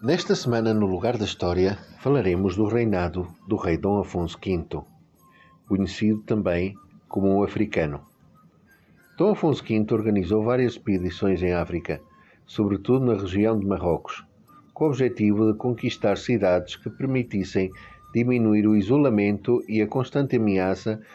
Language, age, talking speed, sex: Portuguese, 50-69, 135 wpm, male